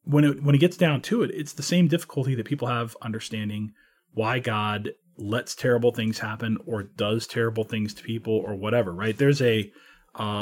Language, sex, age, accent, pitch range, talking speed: English, male, 40-59, American, 105-145 Hz, 195 wpm